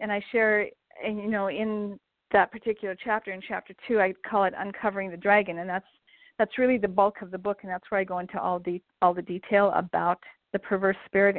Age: 50-69